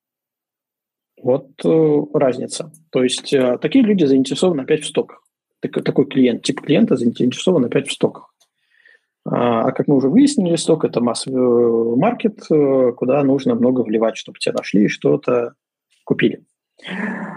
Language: Russian